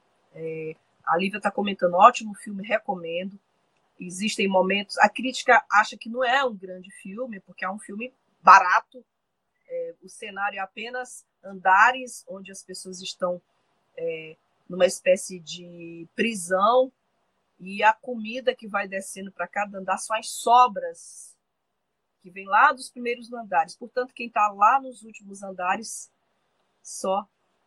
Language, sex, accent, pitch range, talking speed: Portuguese, female, Brazilian, 190-245 Hz, 135 wpm